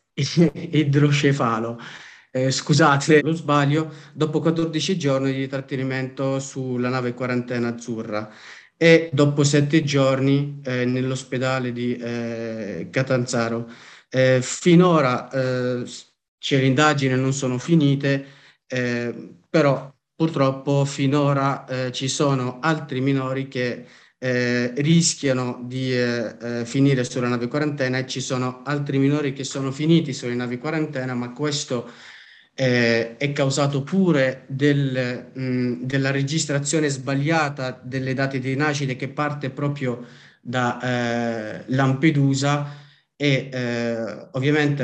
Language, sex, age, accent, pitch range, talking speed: Italian, male, 30-49, native, 125-145 Hz, 110 wpm